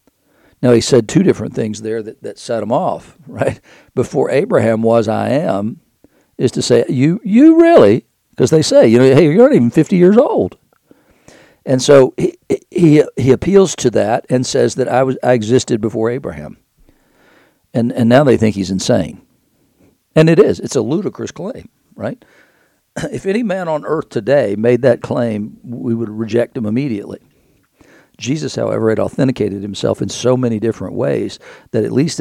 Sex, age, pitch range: male, 60-79, 110-135 Hz